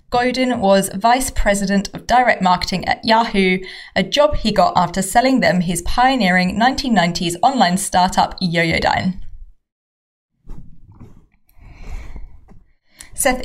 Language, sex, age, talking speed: English, female, 20-39, 105 wpm